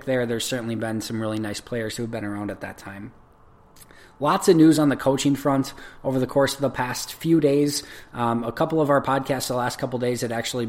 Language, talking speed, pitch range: English, 235 wpm, 115-140 Hz